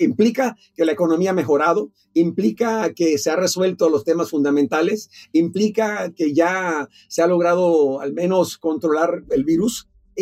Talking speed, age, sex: 155 wpm, 50-69, male